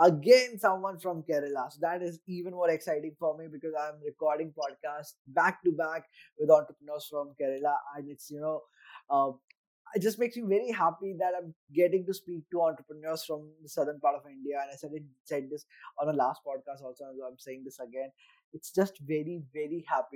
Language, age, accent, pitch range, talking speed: English, 20-39, Indian, 145-180 Hz, 200 wpm